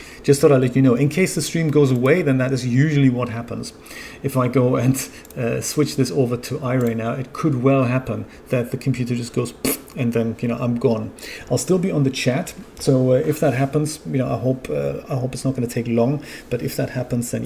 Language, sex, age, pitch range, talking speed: English, male, 40-59, 120-145 Hz, 250 wpm